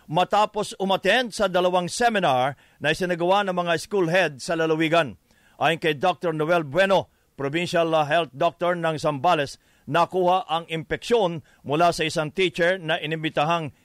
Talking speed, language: 140 wpm, English